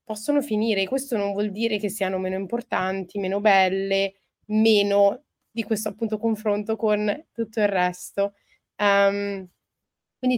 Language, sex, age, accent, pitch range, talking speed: Italian, female, 20-39, native, 190-220 Hz, 125 wpm